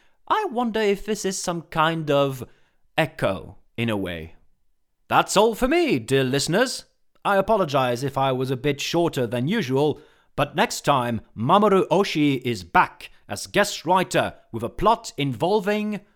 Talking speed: 155 wpm